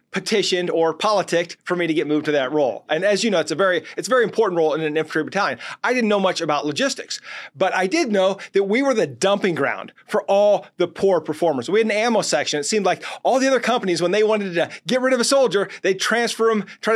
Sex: male